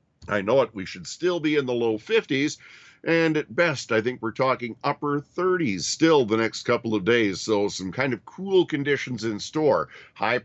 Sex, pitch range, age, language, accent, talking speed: male, 110-135 Hz, 50-69, English, American, 200 wpm